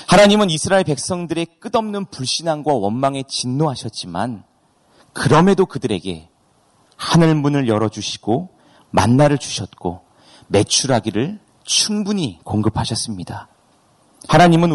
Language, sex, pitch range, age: Korean, male, 120-165 Hz, 30-49